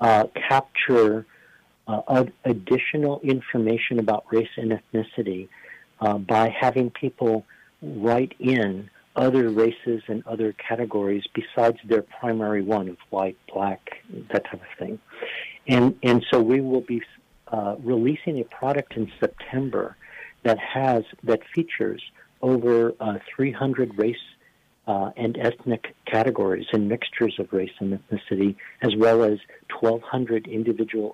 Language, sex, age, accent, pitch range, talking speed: English, male, 50-69, American, 110-125 Hz, 125 wpm